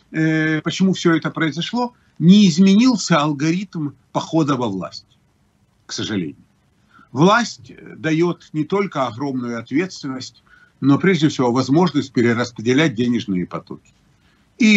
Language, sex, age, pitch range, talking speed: English, male, 50-69, 125-180 Hz, 105 wpm